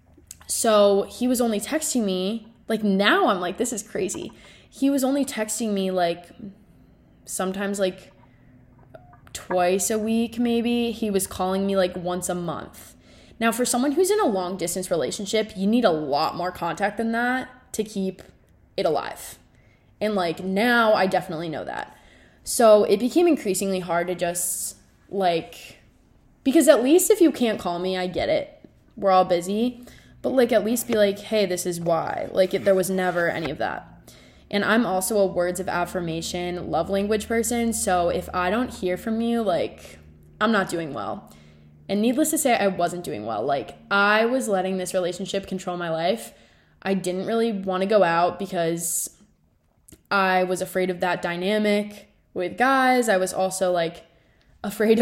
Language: English